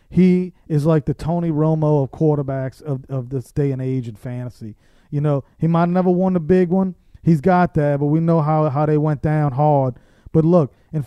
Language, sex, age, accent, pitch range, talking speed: English, male, 30-49, American, 135-170 Hz, 220 wpm